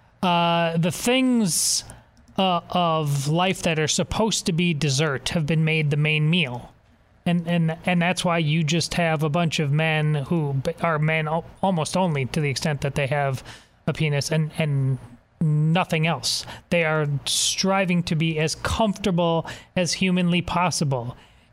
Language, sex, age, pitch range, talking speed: English, male, 30-49, 150-185 Hz, 160 wpm